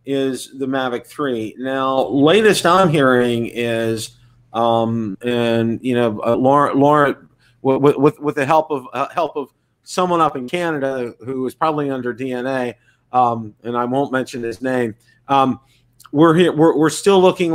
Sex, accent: male, American